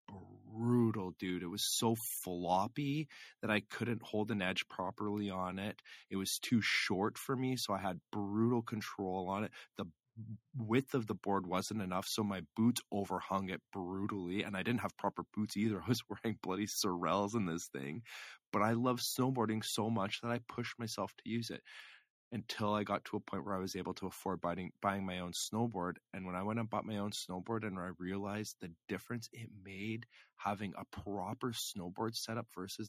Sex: male